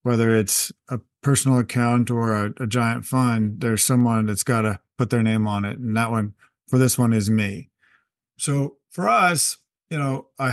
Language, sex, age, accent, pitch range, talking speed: English, male, 40-59, American, 120-140 Hz, 195 wpm